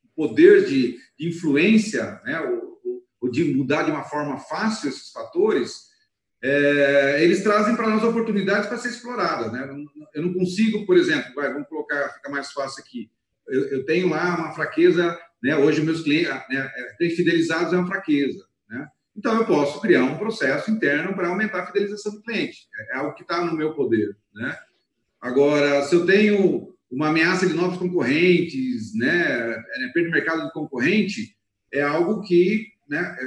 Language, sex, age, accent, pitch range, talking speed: Portuguese, male, 40-59, Brazilian, 155-235 Hz, 170 wpm